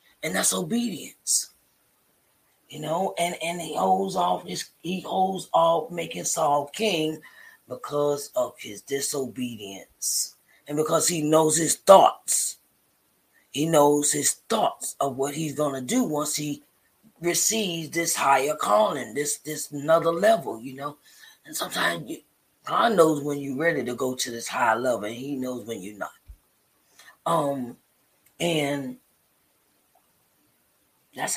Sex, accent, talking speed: female, American, 135 wpm